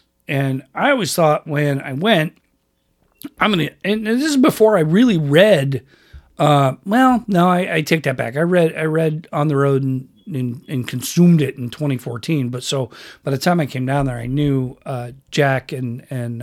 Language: English